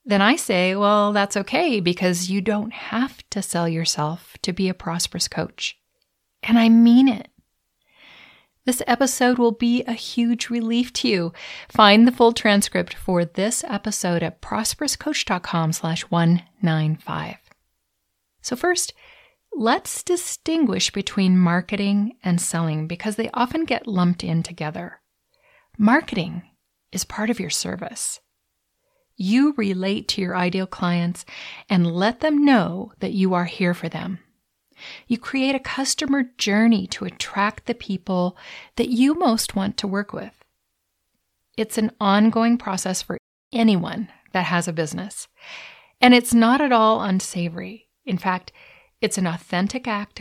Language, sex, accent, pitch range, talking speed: English, female, American, 185-240 Hz, 140 wpm